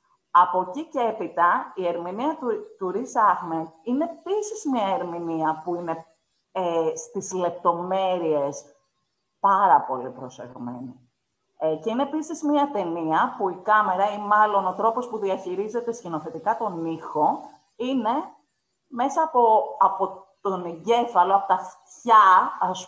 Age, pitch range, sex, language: 30-49, 170-255 Hz, female, Greek